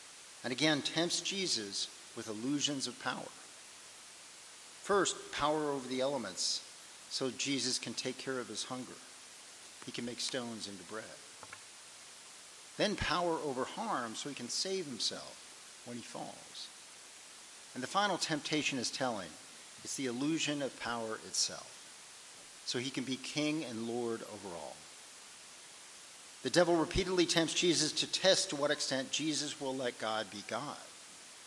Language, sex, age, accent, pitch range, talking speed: English, male, 50-69, American, 125-155 Hz, 145 wpm